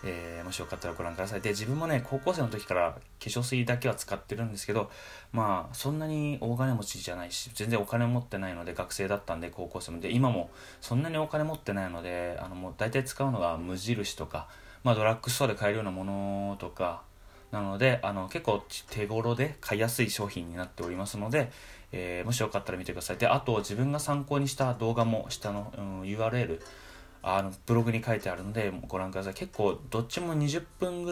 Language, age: Japanese, 20-39